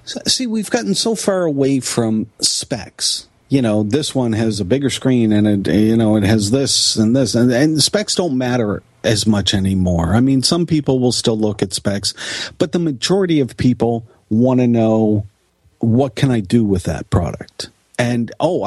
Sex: male